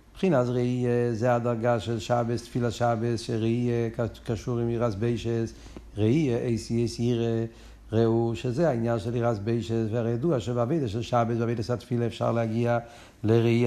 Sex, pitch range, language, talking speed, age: male, 110-135 Hz, Hebrew, 150 wpm, 60-79